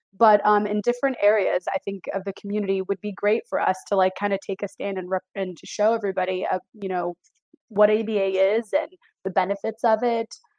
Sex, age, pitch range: female, 20-39, 195-230 Hz